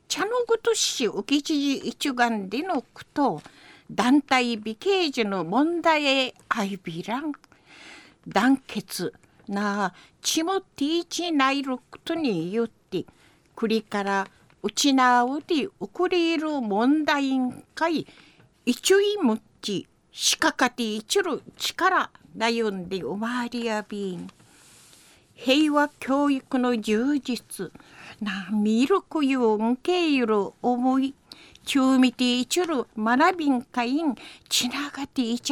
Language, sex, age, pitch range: Japanese, female, 60-79, 230-315 Hz